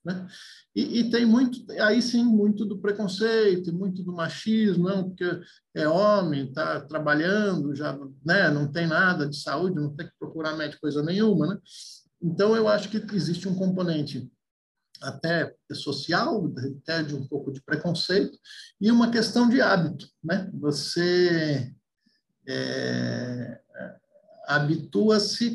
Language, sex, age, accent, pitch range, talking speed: Portuguese, male, 50-69, Brazilian, 155-205 Hz, 130 wpm